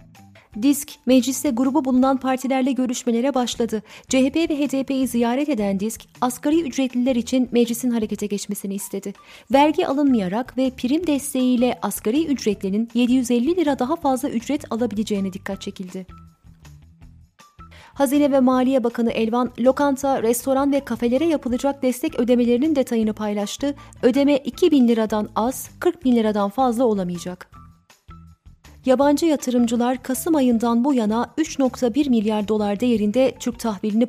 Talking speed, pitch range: 125 wpm, 210-275 Hz